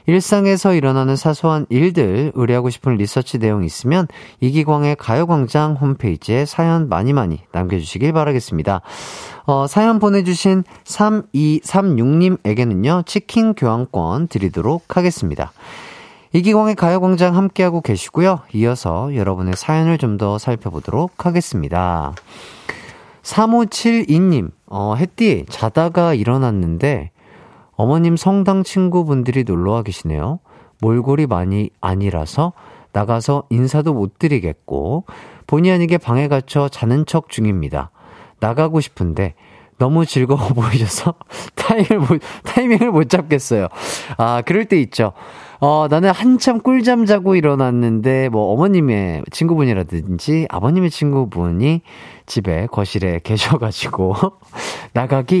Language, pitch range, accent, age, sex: Korean, 110-175 Hz, native, 40-59, male